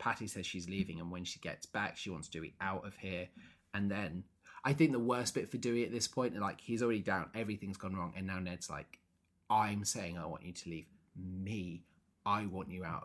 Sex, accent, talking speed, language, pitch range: male, British, 230 wpm, English, 90-110 Hz